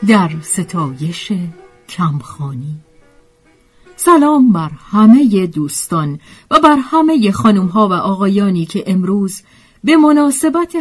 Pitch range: 160-240 Hz